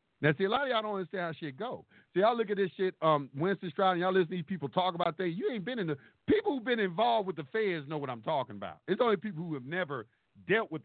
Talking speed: 295 wpm